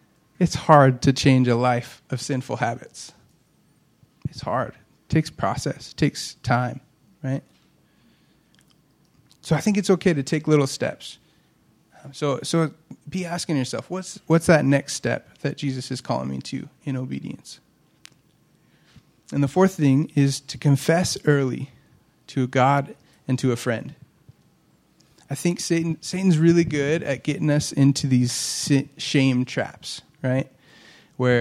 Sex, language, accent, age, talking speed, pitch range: male, English, American, 30-49, 140 wpm, 125-150 Hz